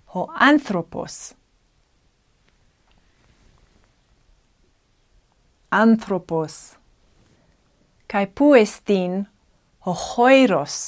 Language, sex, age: Greek, female, 30-49